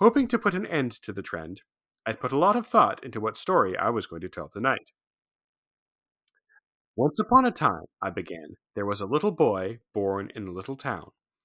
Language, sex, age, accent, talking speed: English, male, 40-59, American, 205 wpm